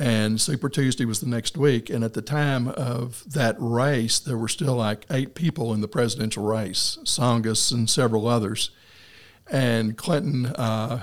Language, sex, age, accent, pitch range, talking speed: English, male, 60-79, American, 110-135 Hz, 170 wpm